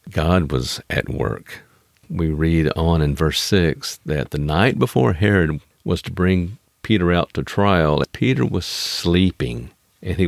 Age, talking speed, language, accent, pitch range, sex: 50-69, 160 wpm, English, American, 80-100 Hz, male